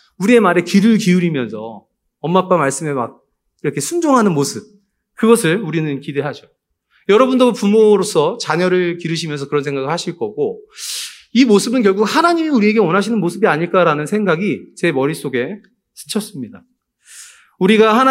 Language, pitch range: Korean, 175-240 Hz